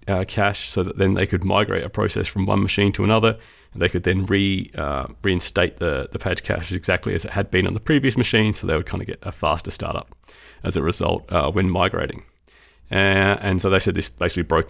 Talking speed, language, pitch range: 235 wpm, English, 90-105 Hz